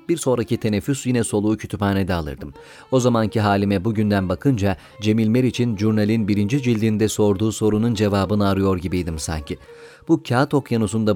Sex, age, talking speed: male, 40-59, 140 wpm